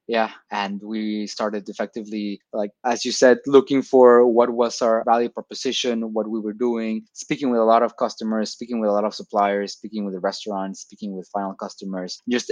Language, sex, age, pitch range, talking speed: English, male, 20-39, 105-125 Hz, 195 wpm